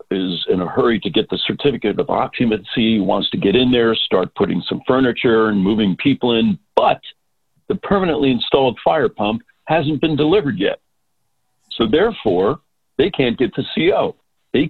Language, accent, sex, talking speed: English, American, male, 165 wpm